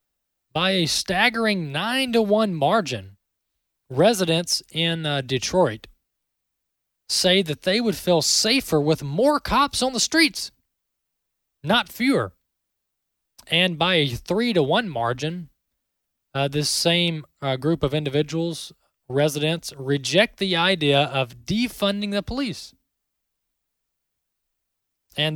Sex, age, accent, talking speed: male, 20-39, American, 105 wpm